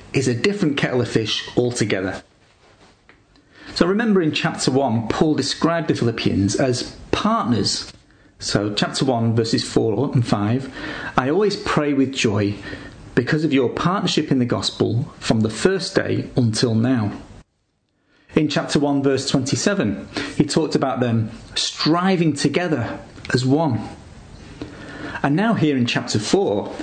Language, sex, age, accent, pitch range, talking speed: English, male, 40-59, British, 110-155 Hz, 140 wpm